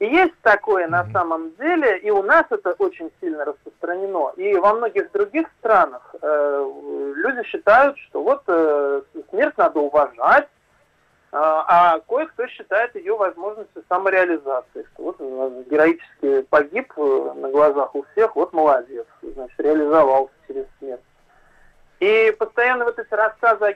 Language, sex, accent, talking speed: Russian, male, native, 135 wpm